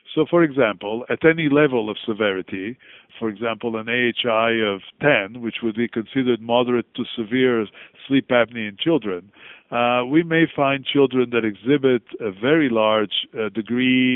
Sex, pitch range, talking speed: male, 110-145 Hz, 155 wpm